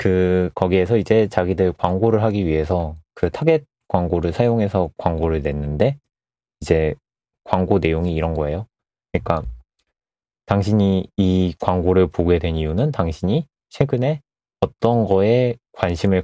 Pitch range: 85-110 Hz